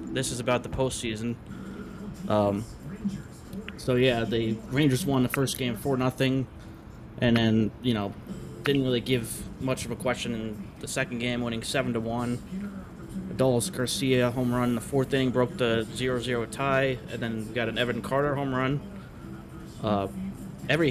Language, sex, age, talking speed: English, male, 20-39, 165 wpm